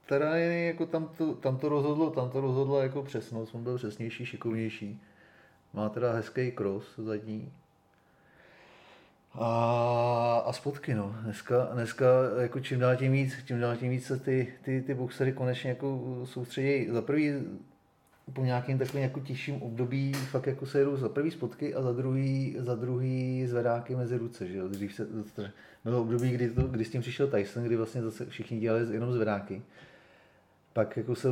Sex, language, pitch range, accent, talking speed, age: male, Czech, 110-130 Hz, native, 160 wpm, 30-49